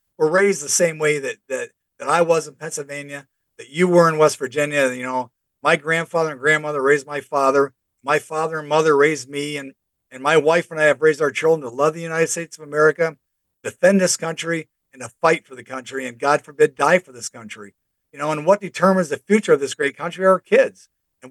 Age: 50-69